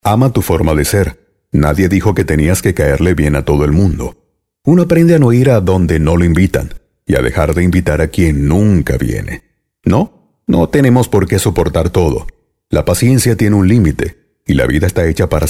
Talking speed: 205 wpm